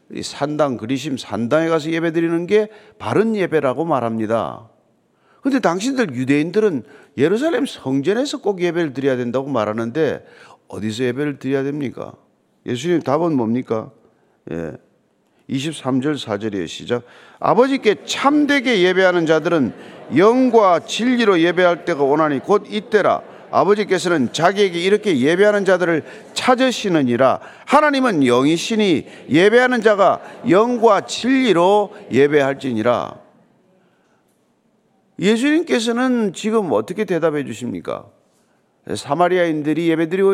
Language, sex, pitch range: Korean, male, 140-210 Hz